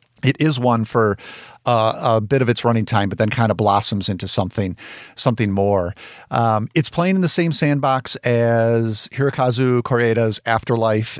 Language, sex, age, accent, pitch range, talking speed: English, male, 50-69, American, 110-140 Hz, 165 wpm